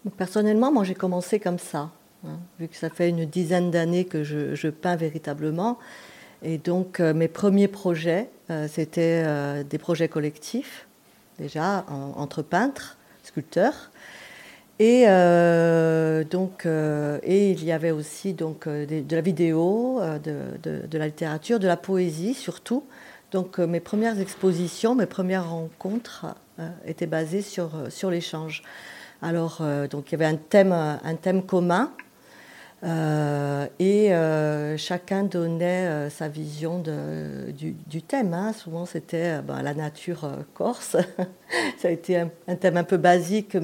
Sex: female